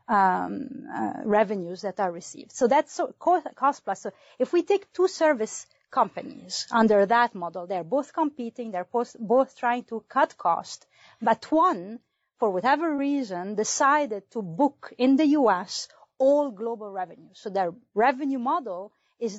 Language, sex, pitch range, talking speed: English, female, 215-280 Hz, 160 wpm